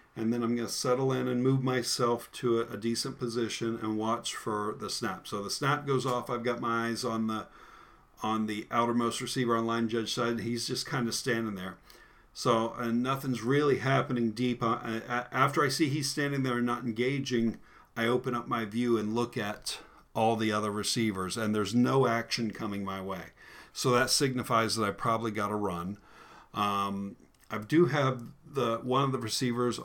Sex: male